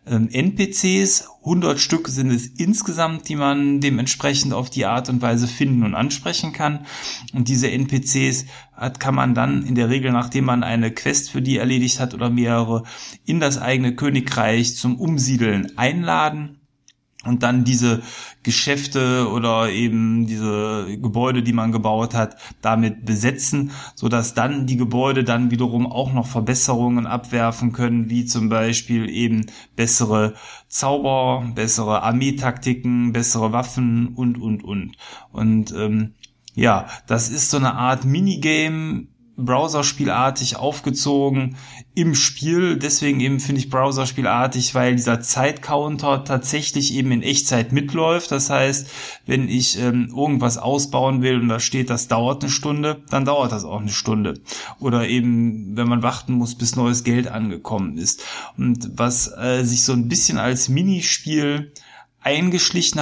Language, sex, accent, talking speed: German, male, German, 145 wpm